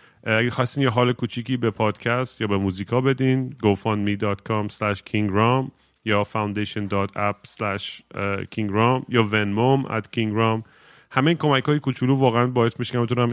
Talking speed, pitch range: 115 wpm, 105-125 Hz